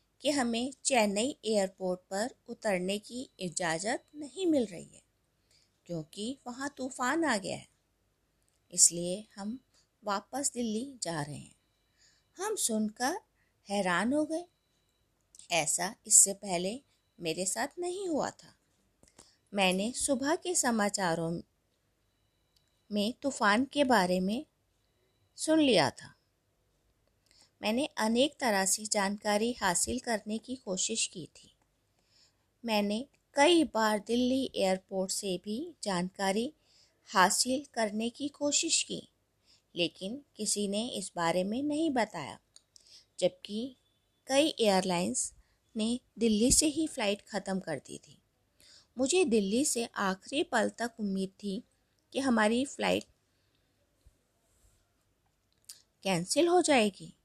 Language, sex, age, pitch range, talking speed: Hindi, female, 20-39, 185-260 Hz, 115 wpm